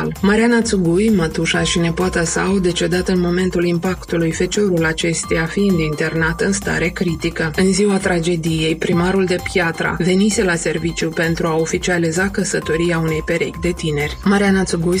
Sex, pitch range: female, 165-190 Hz